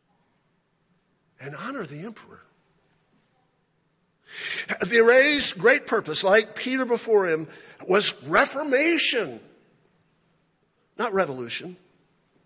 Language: English